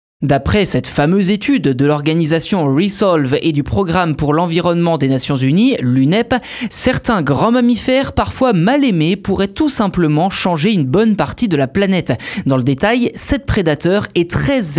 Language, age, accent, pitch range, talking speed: French, 20-39, French, 145-220 Hz, 160 wpm